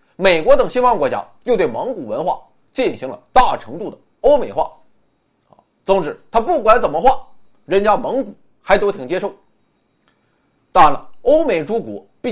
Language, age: Chinese, 30-49